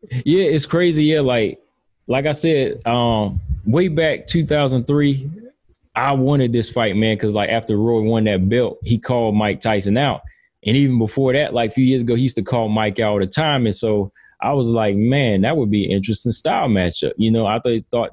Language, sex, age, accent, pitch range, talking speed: English, male, 20-39, American, 105-130 Hz, 215 wpm